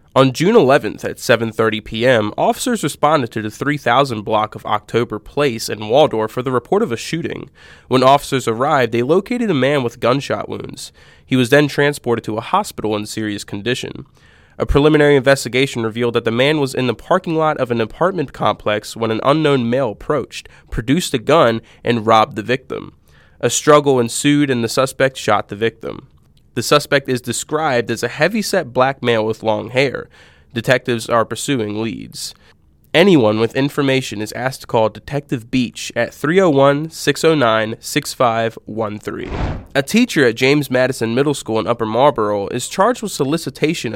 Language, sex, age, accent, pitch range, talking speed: English, male, 20-39, American, 115-145 Hz, 165 wpm